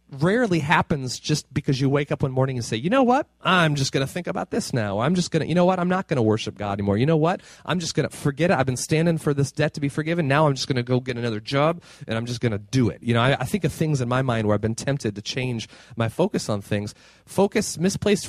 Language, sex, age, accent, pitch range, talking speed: English, male, 30-49, American, 115-155 Hz, 300 wpm